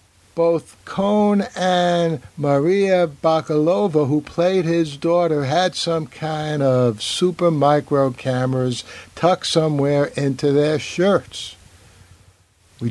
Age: 60-79